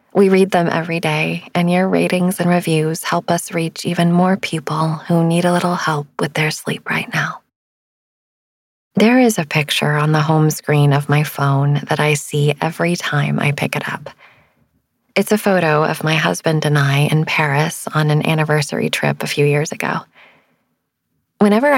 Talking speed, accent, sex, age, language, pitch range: 180 wpm, American, female, 20-39, English, 155-190 Hz